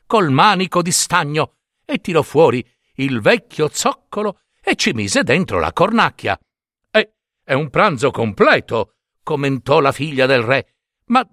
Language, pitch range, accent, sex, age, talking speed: Italian, 140-210 Hz, native, male, 60-79, 145 wpm